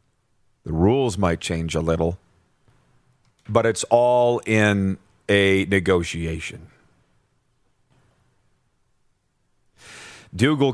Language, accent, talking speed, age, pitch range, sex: English, American, 75 wpm, 40-59, 110-145 Hz, male